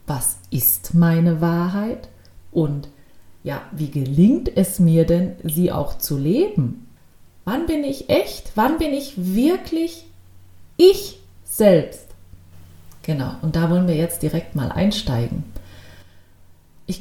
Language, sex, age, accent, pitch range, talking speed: German, female, 30-49, German, 130-205 Hz, 125 wpm